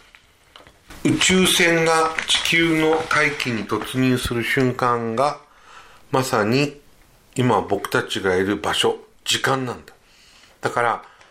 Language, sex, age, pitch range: Japanese, male, 50-69, 110-155 Hz